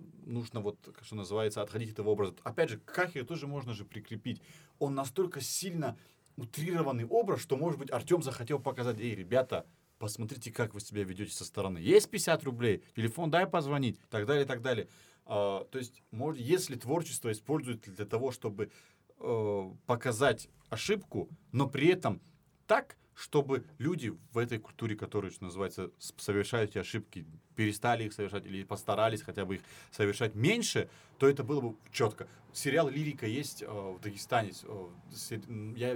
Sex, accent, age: male, native, 30-49